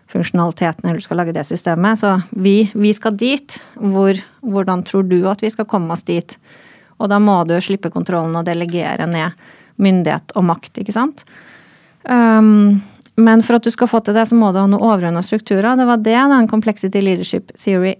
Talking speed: 190 wpm